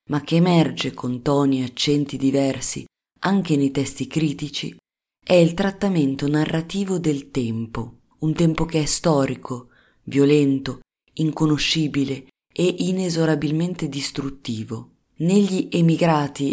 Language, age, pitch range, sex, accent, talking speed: Italian, 30-49, 135-165 Hz, female, native, 110 wpm